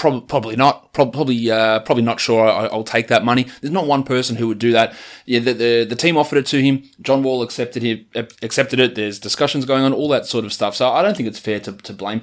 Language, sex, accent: English, male, Australian